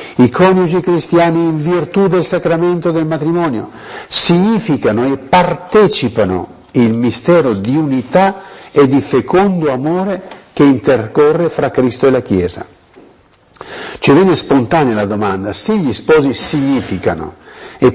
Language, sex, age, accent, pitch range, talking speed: Italian, male, 50-69, native, 110-165 Hz, 125 wpm